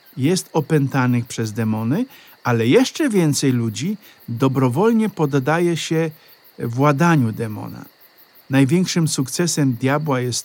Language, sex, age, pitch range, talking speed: Polish, male, 50-69, 130-165 Hz, 100 wpm